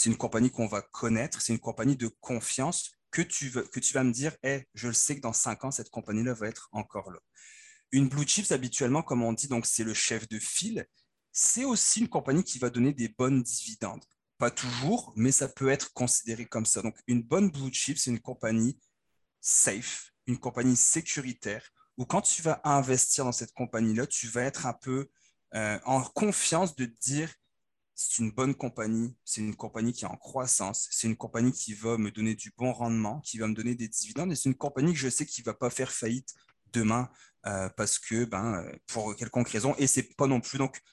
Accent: French